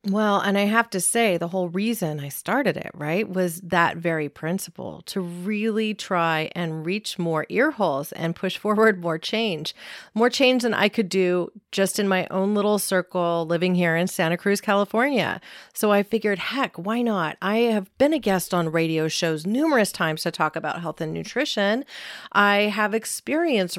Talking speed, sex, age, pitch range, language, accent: 185 wpm, female, 40-59, 170-215 Hz, English, American